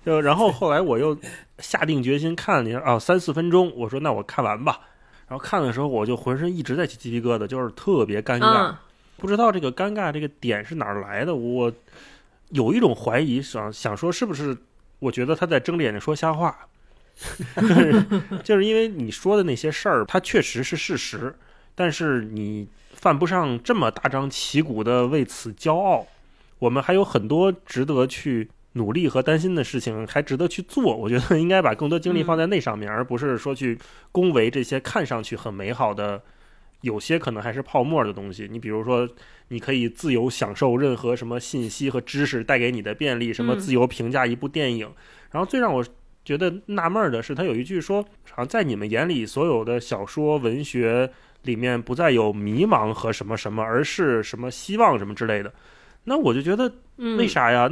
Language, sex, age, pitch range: Chinese, male, 20-39, 120-165 Hz